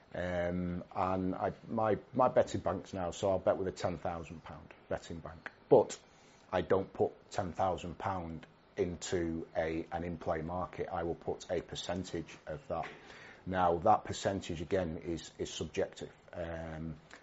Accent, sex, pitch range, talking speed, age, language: British, male, 85-95 Hz, 145 wpm, 30-49, English